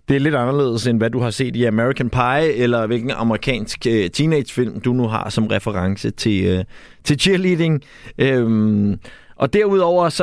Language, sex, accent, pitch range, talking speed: Danish, male, native, 110-140 Hz, 175 wpm